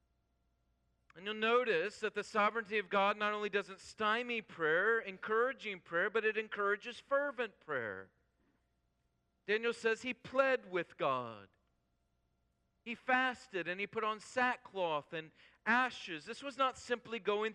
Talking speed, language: 135 wpm, English